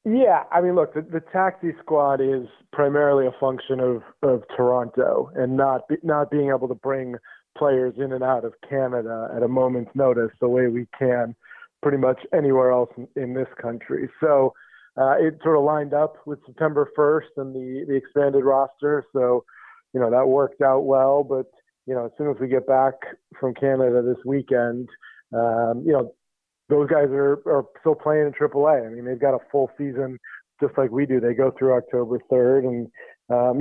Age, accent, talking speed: 40-59, American, 195 wpm